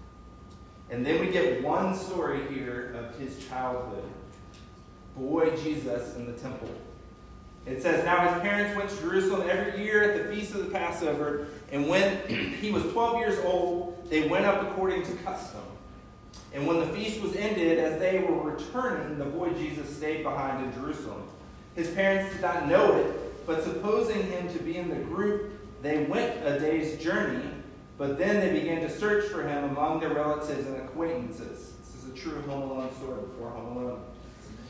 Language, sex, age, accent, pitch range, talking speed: English, male, 30-49, American, 130-180 Hz, 180 wpm